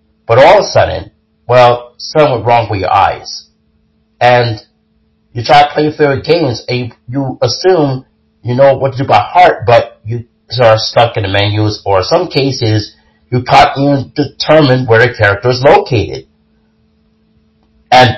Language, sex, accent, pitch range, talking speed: English, male, American, 100-140 Hz, 170 wpm